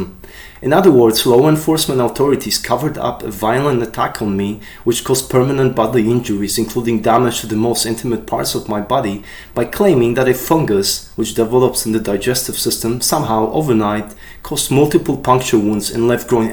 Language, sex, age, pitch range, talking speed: English, male, 30-49, 105-130 Hz, 175 wpm